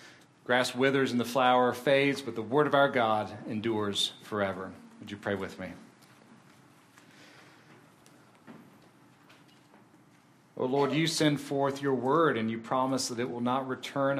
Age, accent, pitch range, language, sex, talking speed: 40-59, American, 110-145 Hz, English, male, 145 wpm